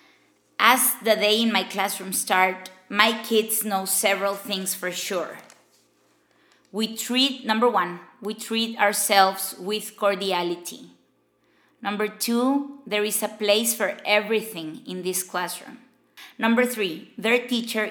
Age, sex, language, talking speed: 20-39, female, Spanish, 125 wpm